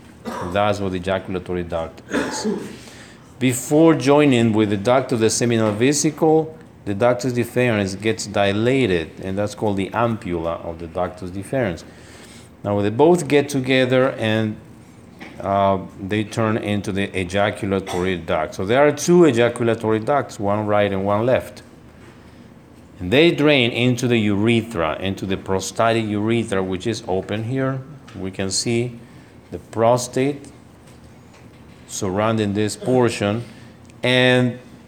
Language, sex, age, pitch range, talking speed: English, male, 50-69, 95-120 Hz, 130 wpm